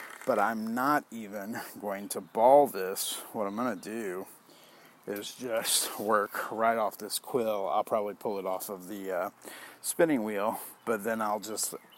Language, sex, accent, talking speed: English, male, American, 170 wpm